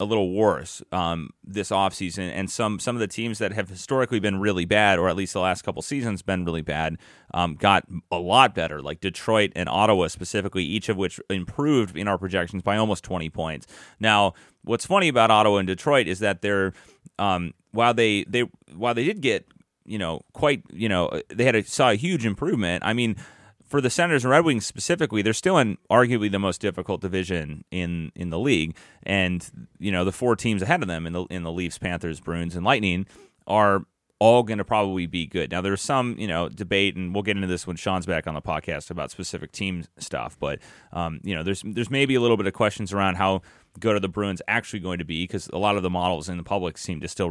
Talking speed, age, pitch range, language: 230 wpm, 30-49, 90-110 Hz, English